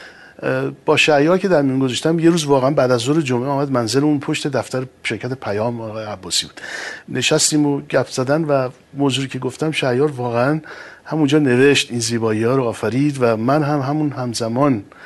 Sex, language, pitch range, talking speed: male, Persian, 115-145 Hz, 180 wpm